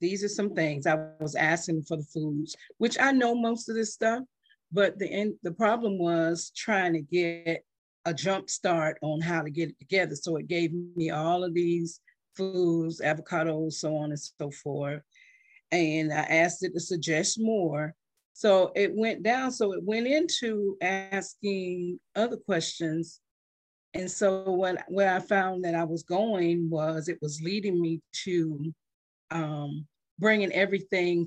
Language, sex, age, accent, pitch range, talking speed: English, female, 40-59, American, 160-200 Hz, 165 wpm